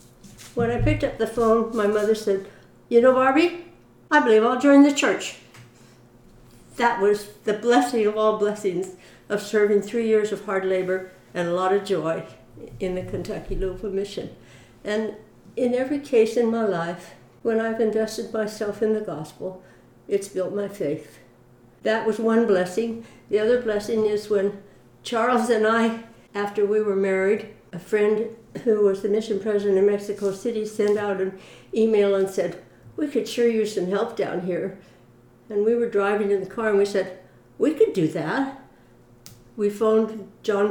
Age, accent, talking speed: 60-79, American, 170 wpm